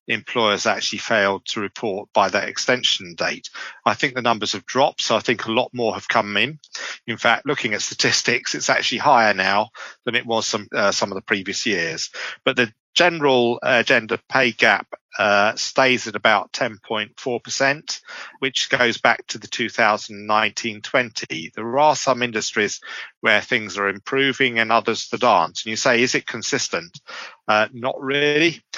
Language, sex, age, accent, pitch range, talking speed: English, male, 40-59, British, 105-130 Hz, 170 wpm